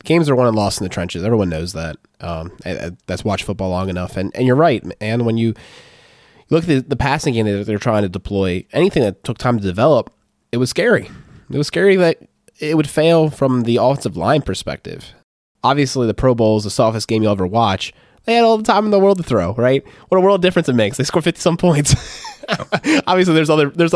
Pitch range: 95-135 Hz